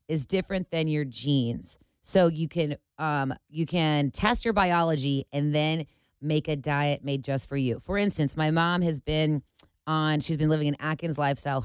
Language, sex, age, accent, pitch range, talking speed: English, female, 30-49, American, 145-185 Hz, 185 wpm